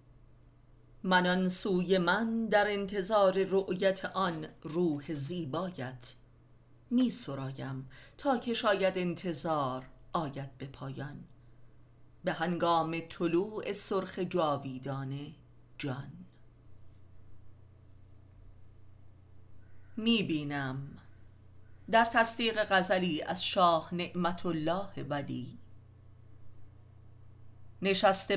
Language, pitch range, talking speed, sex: Persian, 120-185 Hz, 70 wpm, female